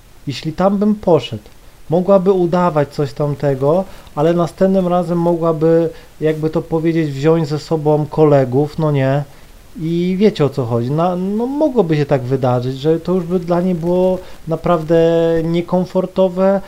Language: Polish